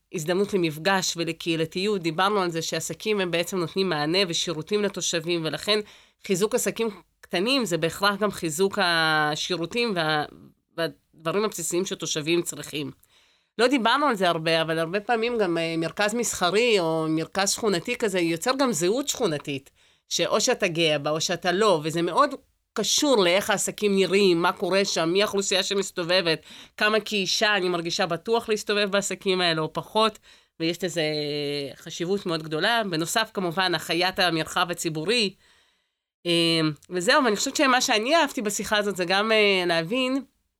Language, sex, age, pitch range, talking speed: Hebrew, female, 30-49, 165-210 Hz, 140 wpm